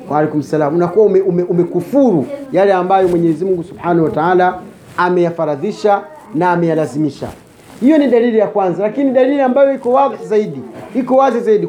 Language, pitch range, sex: Swahili, 180-240 Hz, male